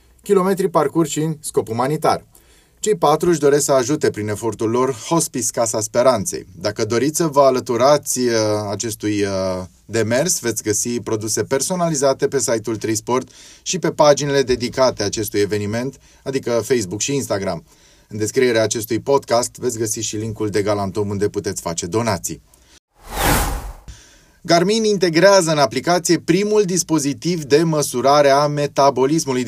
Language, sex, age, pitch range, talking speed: Romanian, male, 30-49, 110-150 Hz, 130 wpm